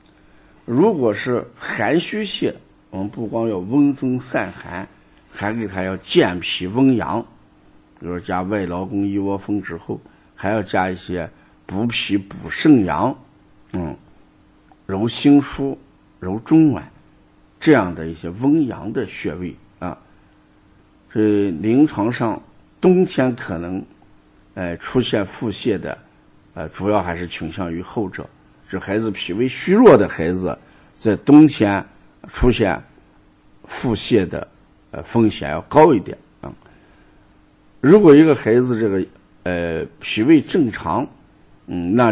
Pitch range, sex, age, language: 90-120 Hz, male, 50-69, Chinese